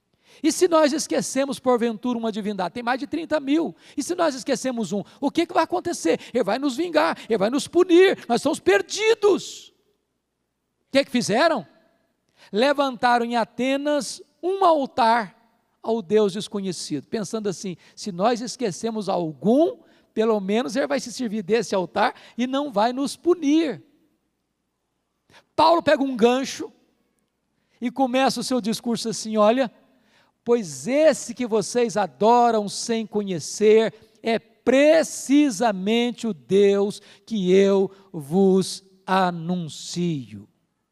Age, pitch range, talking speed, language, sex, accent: 50-69, 205-270 Hz, 135 wpm, Portuguese, male, Brazilian